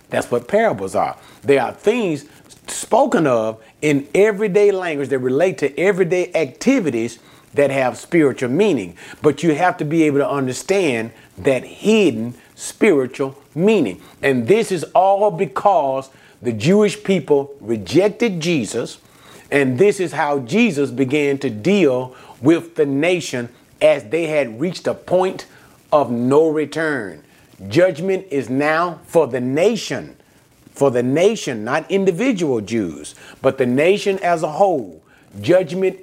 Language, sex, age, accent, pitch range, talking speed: English, male, 40-59, American, 135-185 Hz, 135 wpm